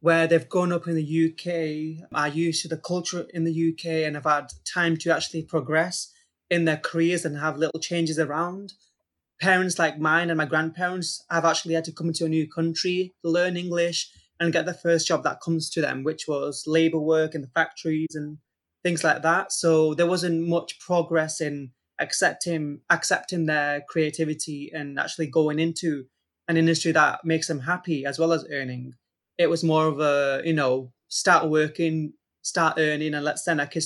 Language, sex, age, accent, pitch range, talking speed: English, male, 20-39, British, 150-170 Hz, 190 wpm